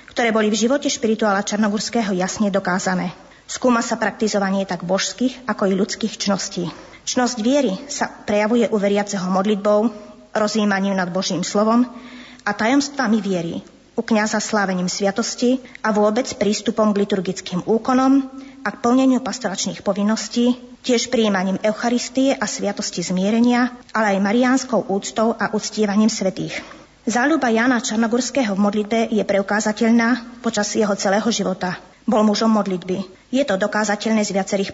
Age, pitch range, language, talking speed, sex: 20-39, 195-230 Hz, Slovak, 135 wpm, female